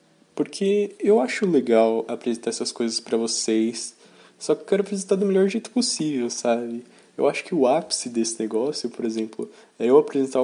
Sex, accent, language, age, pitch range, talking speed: male, Brazilian, Portuguese, 20-39, 115-140 Hz, 180 wpm